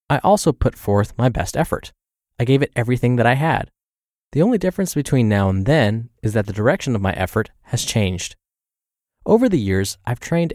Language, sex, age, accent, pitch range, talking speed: English, male, 20-39, American, 105-145 Hz, 200 wpm